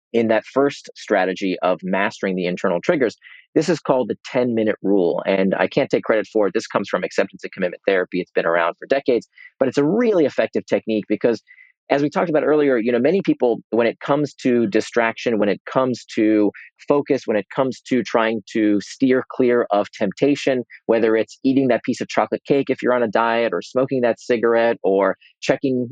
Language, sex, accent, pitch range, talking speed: English, male, American, 110-145 Hz, 205 wpm